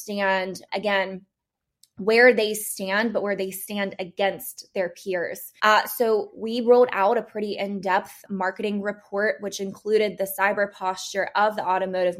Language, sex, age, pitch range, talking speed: English, female, 20-39, 185-210 Hz, 145 wpm